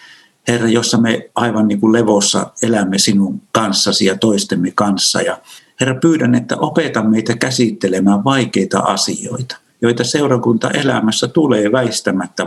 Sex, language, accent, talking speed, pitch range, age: male, Finnish, native, 115 wpm, 100-120 Hz, 50-69